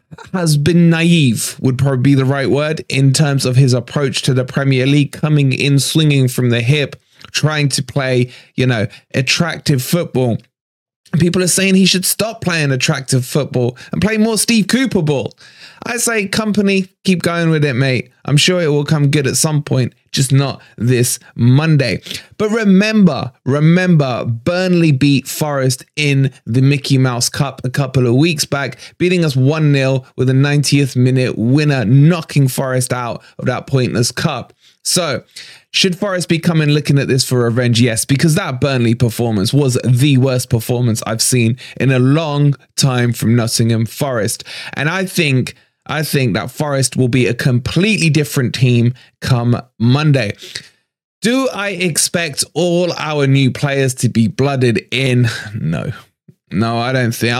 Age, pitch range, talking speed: 20-39, 125-160 Hz, 165 wpm